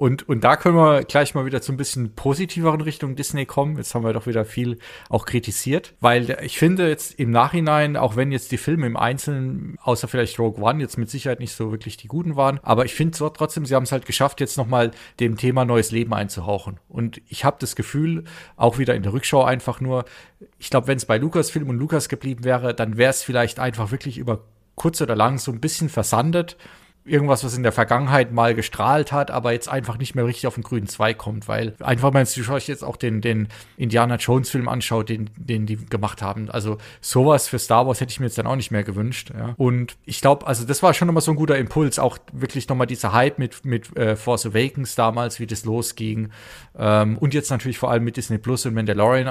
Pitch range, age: 115-140 Hz, 40-59